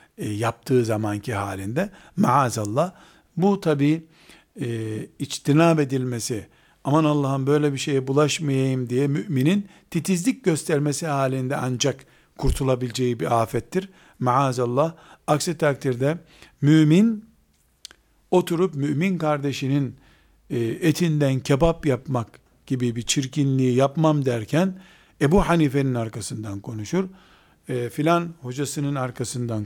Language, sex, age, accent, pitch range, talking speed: Turkish, male, 50-69, native, 125-160 Hz, 100 wpm